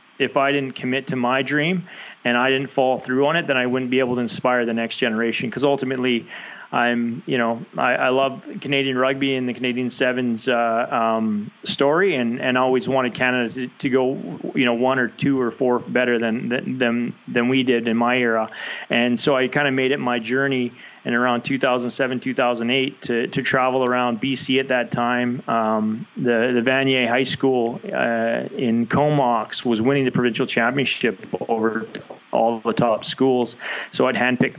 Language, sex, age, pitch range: English, male, 30-49, 120-135 Hz